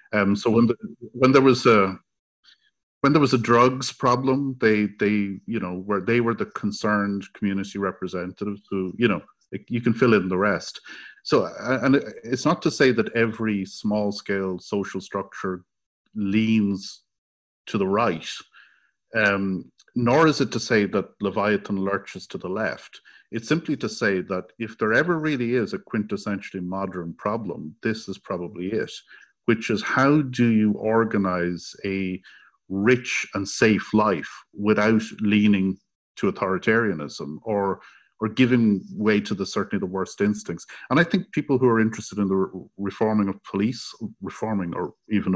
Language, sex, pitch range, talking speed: English, male, 95-115 Hz, 160 wpm